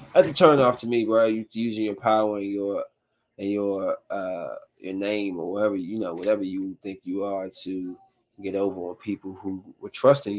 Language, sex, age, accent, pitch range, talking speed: English, male, 20-39, American, 105-150 Hz, 195 wpm